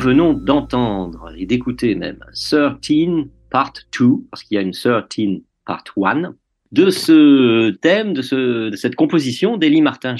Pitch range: 105-160 Hz